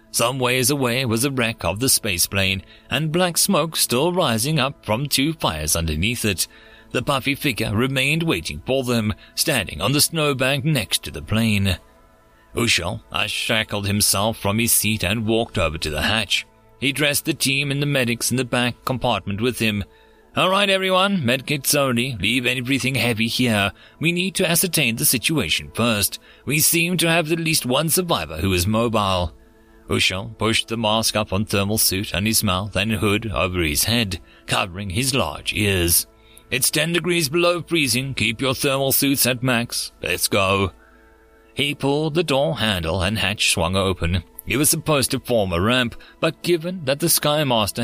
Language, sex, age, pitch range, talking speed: English, male, 30-49, 105-140 Hz, 180 wpm